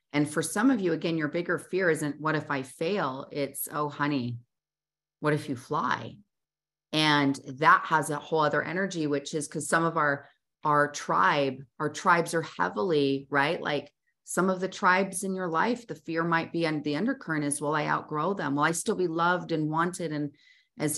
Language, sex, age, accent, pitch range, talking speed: English, female, 30-49, American, 145-170 Hz, 200 wpm